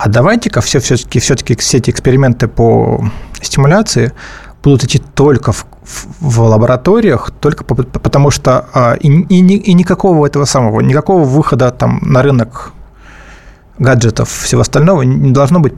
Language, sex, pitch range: Russian, male, 120-150 Hz